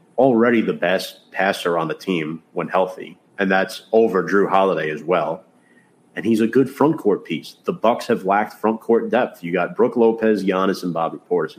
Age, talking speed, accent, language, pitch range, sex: 30-49, 195 wpm, American, English, 85-105 Hz, male